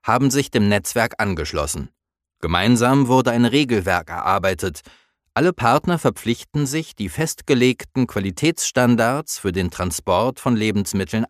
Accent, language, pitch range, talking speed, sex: German, German, 95-135 Hz, 115 wpm, male